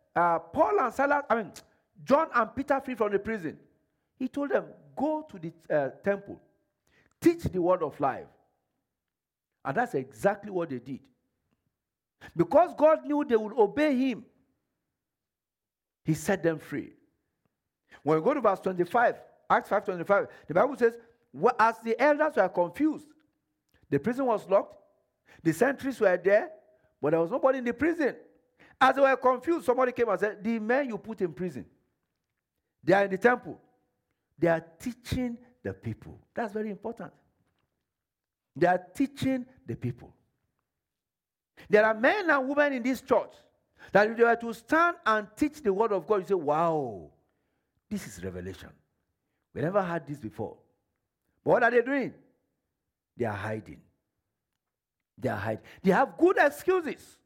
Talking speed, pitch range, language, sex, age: 160 wpm, 175-270 Hz, English, male, 50-69